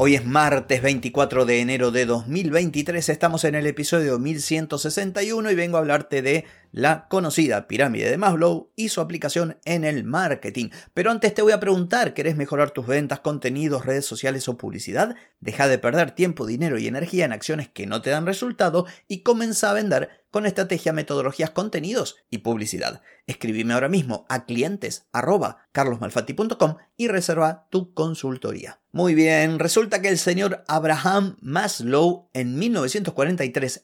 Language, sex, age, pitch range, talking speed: Spanish, male, 30-49, 125-175 Hz, 155 wpm